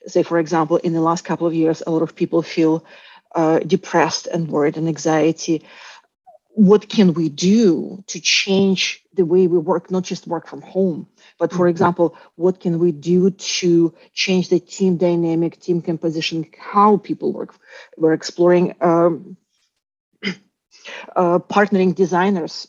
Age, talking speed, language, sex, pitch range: 40-59, 155 wpm, English, female, 170-190 Hz